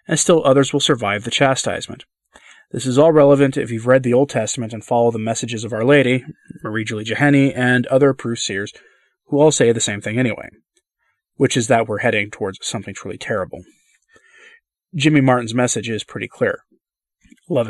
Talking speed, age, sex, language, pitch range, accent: 180 wpm, 30-49, male, English, 115-155 Hz, American